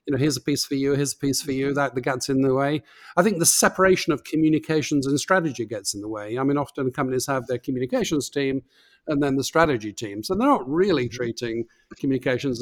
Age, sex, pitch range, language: 50-69, male, 130-155 Hz, English